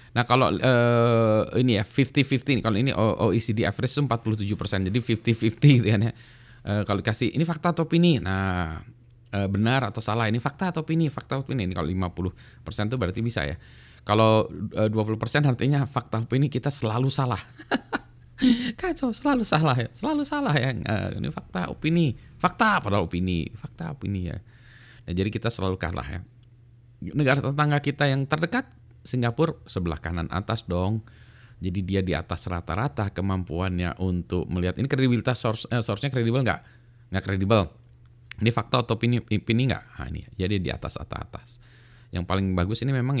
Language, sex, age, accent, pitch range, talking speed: Indonesian, male, 20-39, native, 95-125 Hz, 170 wpm